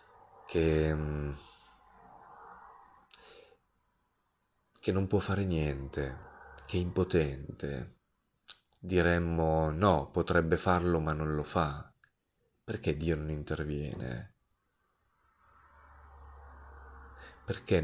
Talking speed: 75 wpm